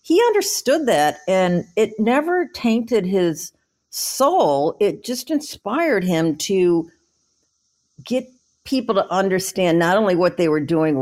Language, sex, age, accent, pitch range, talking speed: English, female, 50-69, American, 155-235 Hz, 135 wpm